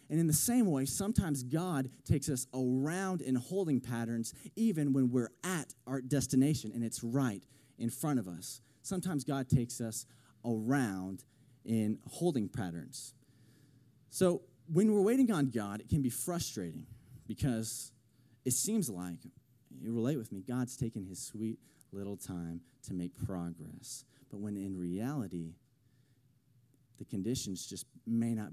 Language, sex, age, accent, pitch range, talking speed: English, male, 20-39, American, 110-140 Hz, 145 wpm